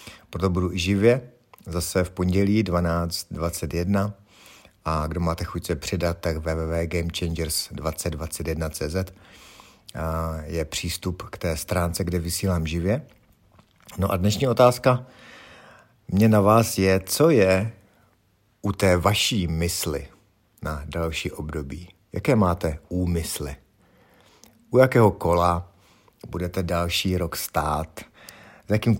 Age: 50-69